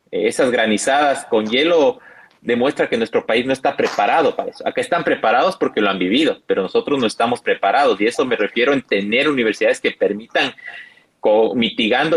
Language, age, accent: Spanish, 30-49, Mexican